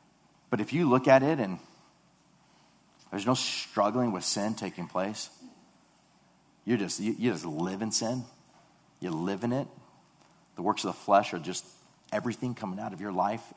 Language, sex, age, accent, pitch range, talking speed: English, male, 40-59, American, 100-130 Hz, 165 wpm